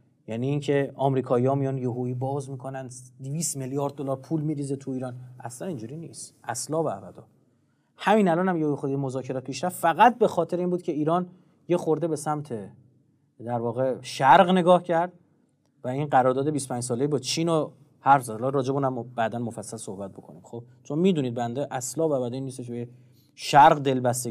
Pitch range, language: 125-155 Hz, Persian